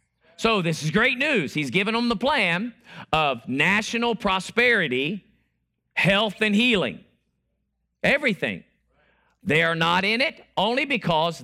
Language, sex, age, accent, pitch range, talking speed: English, male, 50-69, American, 160-220 Hz, 125 wpm